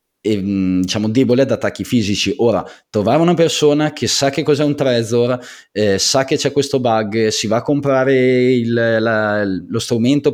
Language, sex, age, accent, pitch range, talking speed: Italian, male, 20-39, native, 95-120 Hz, 175 wpm